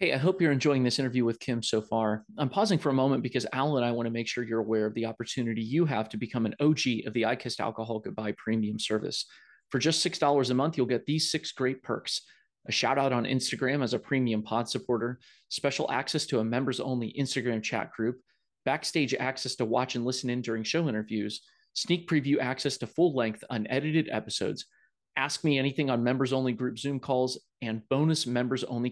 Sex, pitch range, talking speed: male, 115-145 Hz, 215 wpm